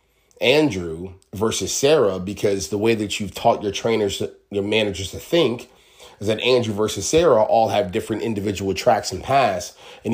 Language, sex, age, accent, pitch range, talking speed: English, male, 30-49, American, 95-120 Hz, 165 wpm